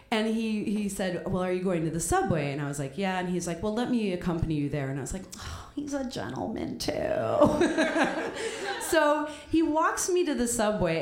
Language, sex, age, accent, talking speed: English, female, 30-49, American, 225 wpm